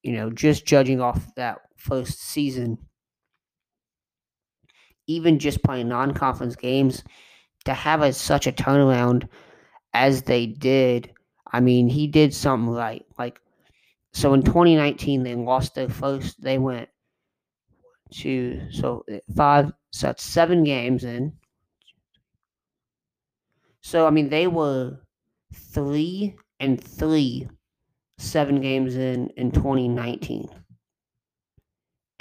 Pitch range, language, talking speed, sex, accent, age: 125-145 Hz, English, 105 wpm, male, American, 30-49